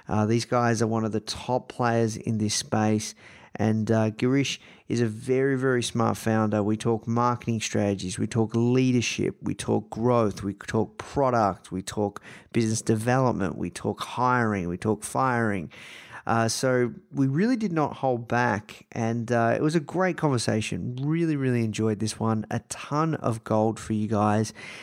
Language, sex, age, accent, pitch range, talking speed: English, male, 30-49, Australian, 110-130 Hz, 170 wpm